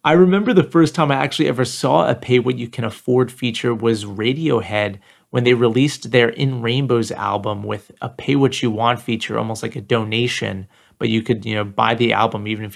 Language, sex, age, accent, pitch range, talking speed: English, male, 30-49, American, 115-140 Hz, 215 wpm